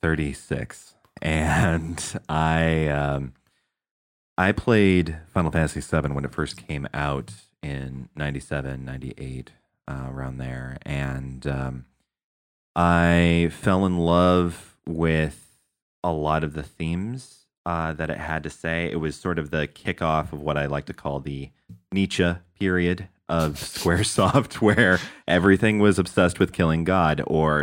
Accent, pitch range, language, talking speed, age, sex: American, 70-90 Hz, English, 140 wpm, 30-49, male